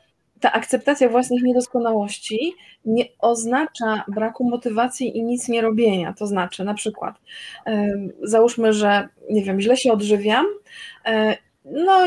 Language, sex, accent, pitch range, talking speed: Polish, female, native, 210-255 Hz, 120 wpm